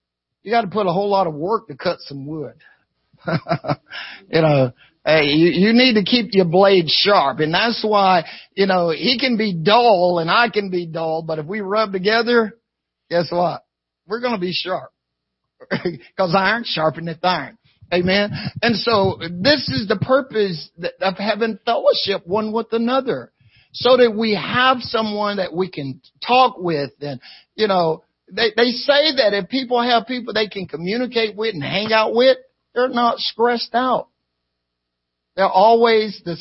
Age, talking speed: 50-69, 170 wpm